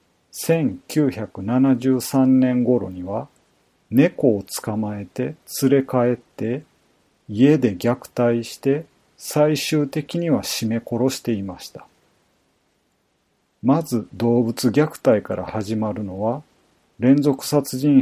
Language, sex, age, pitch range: Japanese, male, 40-59, 110-140 Hz